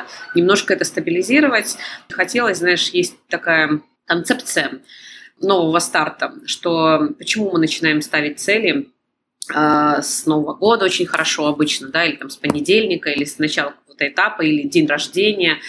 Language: Russian